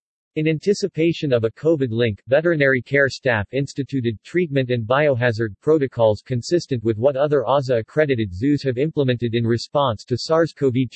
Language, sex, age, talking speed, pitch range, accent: English, male, 50-69, 140 wpm, 120-145 Hz, American